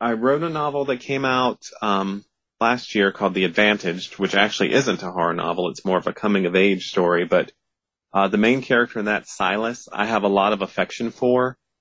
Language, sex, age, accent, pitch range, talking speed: English, male, 30-49, American, 100-120 Hz, 205 wpm